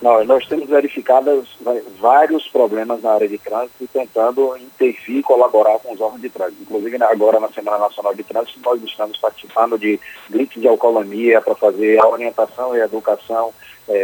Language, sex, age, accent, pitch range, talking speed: Portuguese, male, 40-59, Brazilian, 105-130 Hz, 180 wpm